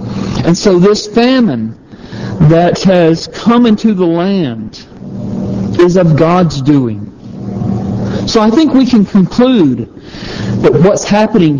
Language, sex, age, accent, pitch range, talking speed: English, male, 50-69, American, 155-210 Hz, 120 wpm